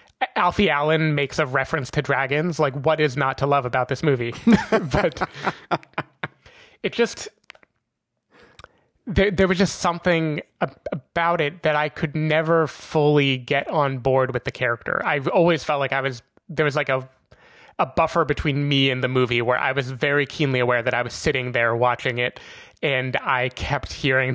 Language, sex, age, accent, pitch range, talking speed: English, male, 20-39, American, 130-160 Hz, 175 wpm